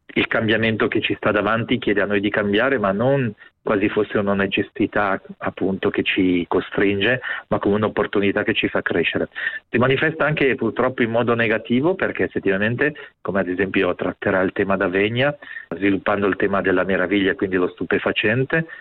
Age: 40-59